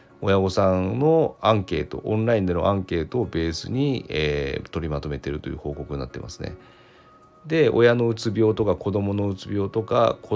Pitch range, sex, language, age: 85-120 Hz, male, Japanese, 40-59